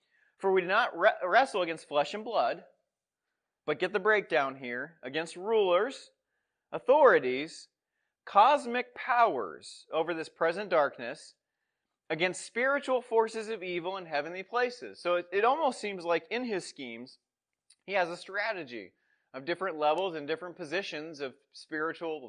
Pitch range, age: 150-210 Hz, 30-49